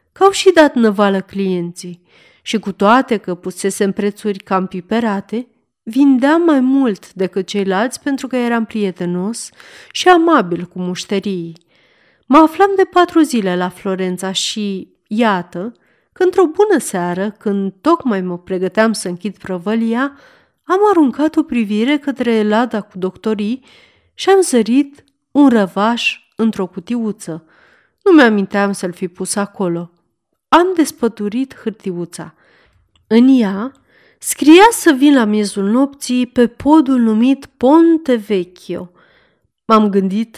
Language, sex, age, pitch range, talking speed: Romanian, female, 40-59, 195-290 Hz, 125 wpm